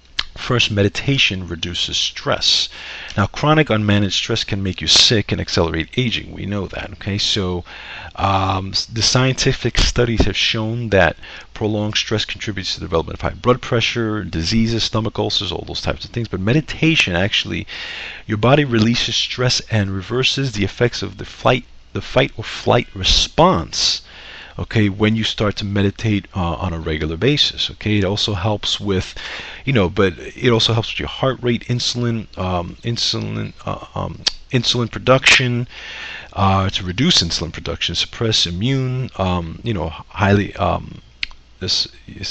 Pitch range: 90-115 Hz